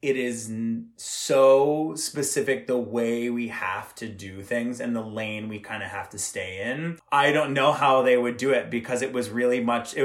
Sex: male